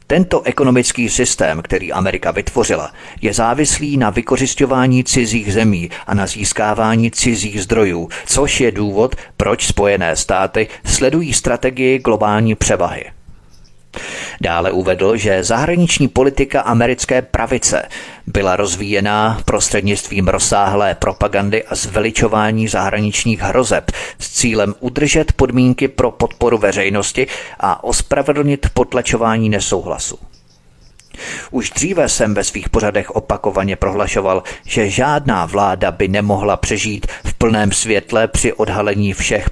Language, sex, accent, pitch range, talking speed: Czech, male, native, 100-120 Hz, 110 wpm